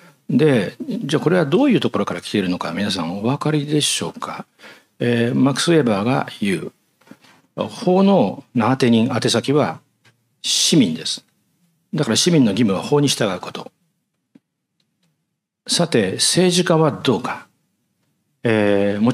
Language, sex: Japanese, male